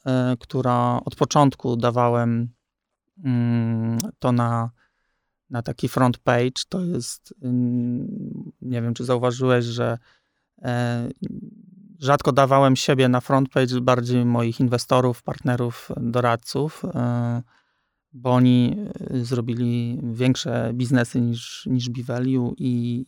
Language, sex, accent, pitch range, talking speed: Polish, male, native, 120-135 Hz, 95 wpm